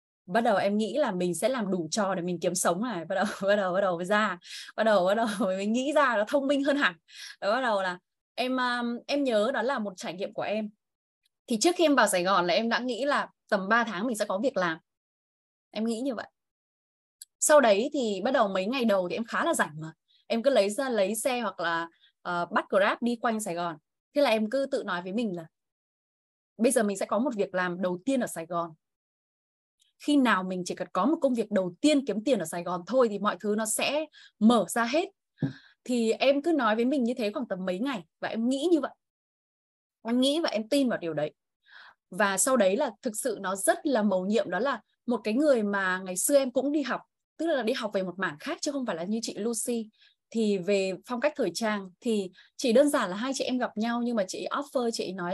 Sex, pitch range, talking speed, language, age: female, 190-265 Hz, 250 wpm, Vietnamese, 10-29